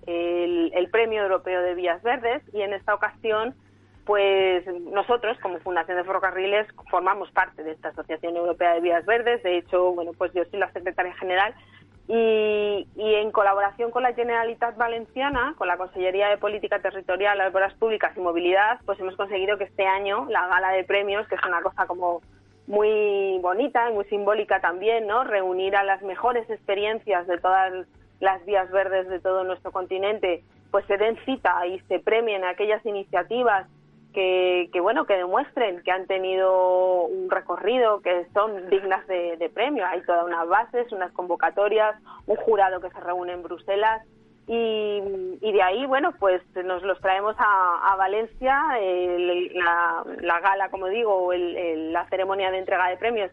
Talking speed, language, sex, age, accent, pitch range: 175 wpm, Spanish, female, 30-49, Spanish, 180-210 Hz